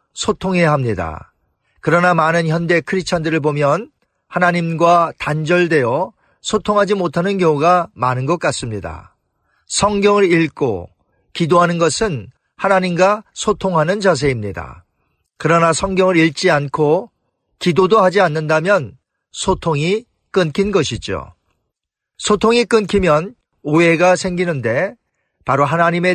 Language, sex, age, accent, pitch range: Korean, male, 40-59, native, 145-190 Hz